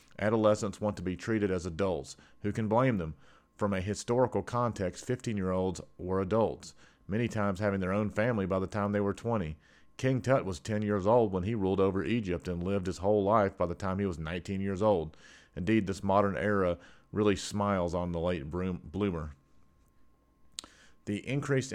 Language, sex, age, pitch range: English, male, 40-59, 90-105 Hz